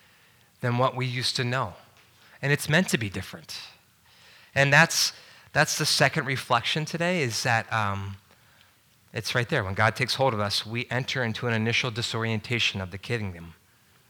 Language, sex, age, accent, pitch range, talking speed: English, male, 30-49, American, 105-130 Hz, 170 wpm